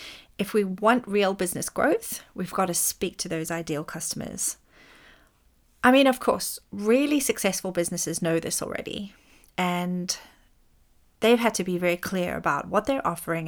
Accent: British